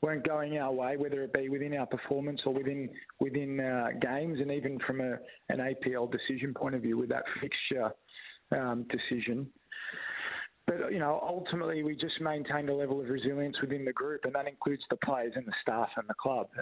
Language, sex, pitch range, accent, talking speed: English, male, 130-150 Hz, Australian, 200 wpm